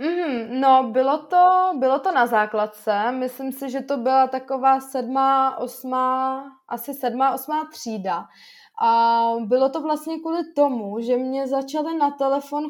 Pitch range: 230-260 Hz